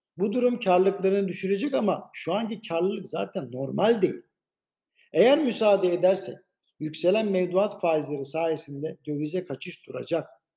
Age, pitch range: 60-79, 160-205 Hz